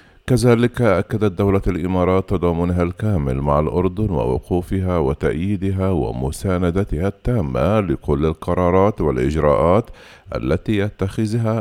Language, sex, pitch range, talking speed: Arabic, male, 75-100 Hz, 90 wpm